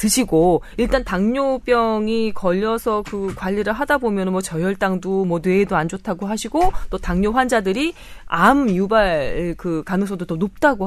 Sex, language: female, Korean